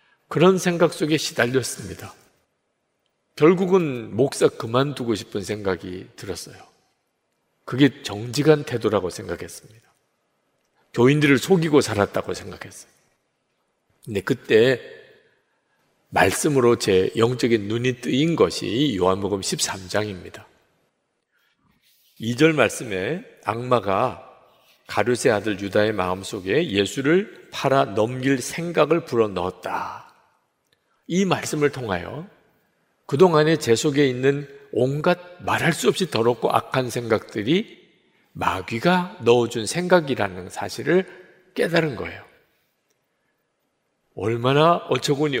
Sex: male